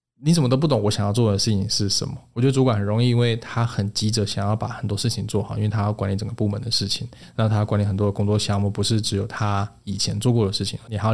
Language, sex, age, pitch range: Chinese, male, 20-39, 105-120 Hz